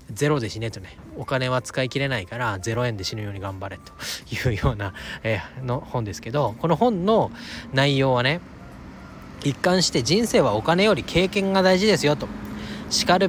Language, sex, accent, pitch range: Japanese, male, native, 110-150 Hz